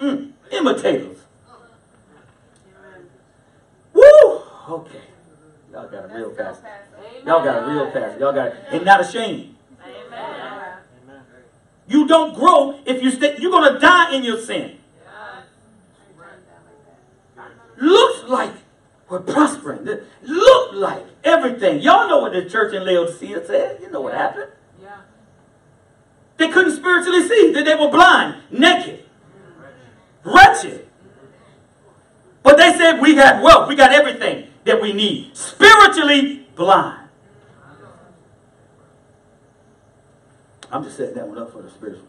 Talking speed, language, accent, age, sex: 120 wpm, English, American, 40-59, male